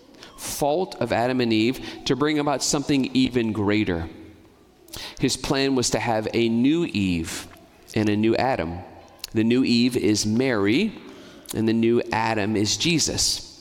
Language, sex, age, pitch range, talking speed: English, male, 40-59, 105-130 Hz, 150 wpm